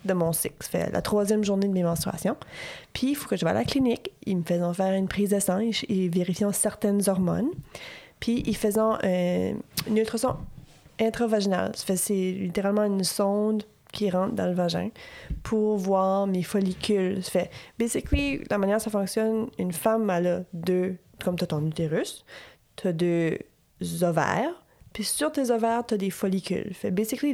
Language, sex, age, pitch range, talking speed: French, female, 30-49, 185-225 Hz, 190 wpm